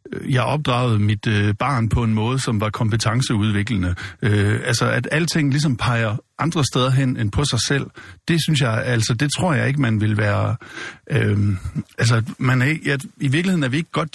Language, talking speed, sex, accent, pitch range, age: Danish, 195 wpm, male, native, 115-145 Hz, 60-79